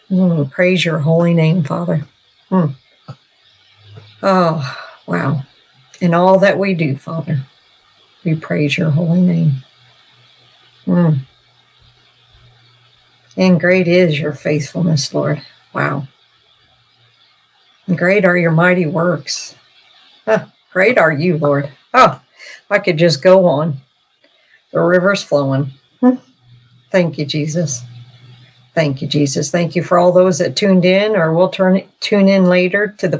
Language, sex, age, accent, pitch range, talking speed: English, female, 50-69, American, 145-180 Hz, 125 wpm